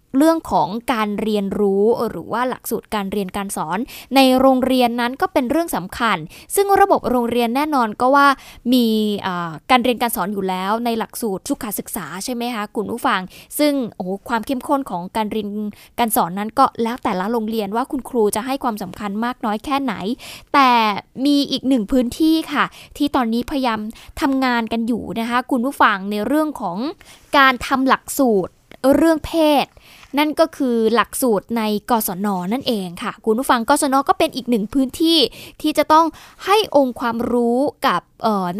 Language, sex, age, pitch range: Thai, female, 20-39, 215-275 Hz